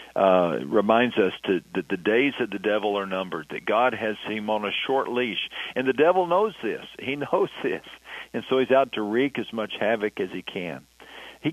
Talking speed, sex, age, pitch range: 210 wpm, male, 50-69, 105-130 Hz